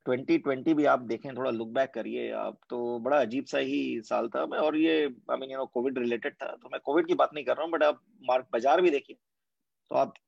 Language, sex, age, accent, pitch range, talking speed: Hindi, male, 30-49, native, 120-150 Hz, 235 wpm